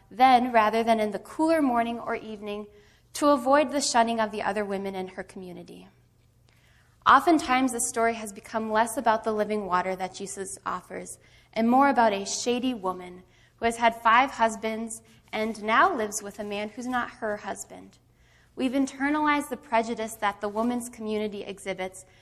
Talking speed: 170 wpm